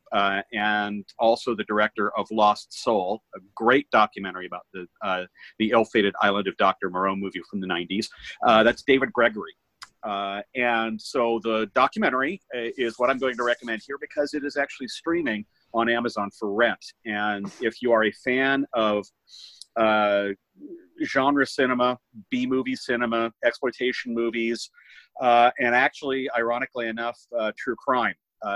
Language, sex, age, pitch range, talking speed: English, male, 40-59, 105-130 Hz, 150 wpm